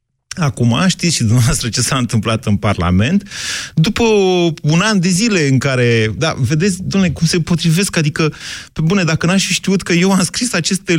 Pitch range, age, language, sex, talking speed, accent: 120-180 Hz, 30-49, Romanian, male, 185 wpm, native